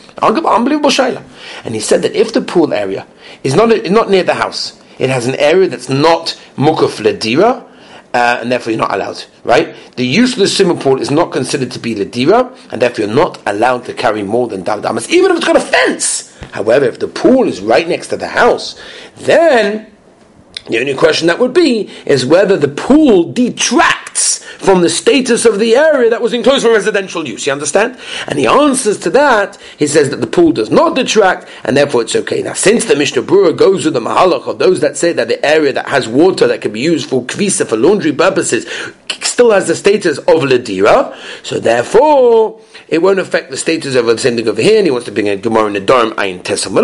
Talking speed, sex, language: 225 wpm, male, English